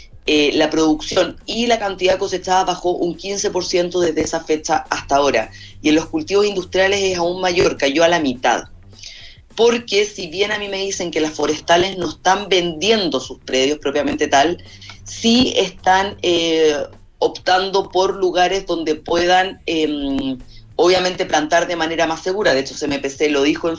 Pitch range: 145-185 Hz